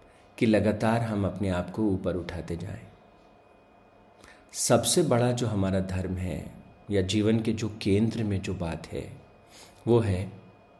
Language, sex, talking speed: Hindi, male, 145 wpm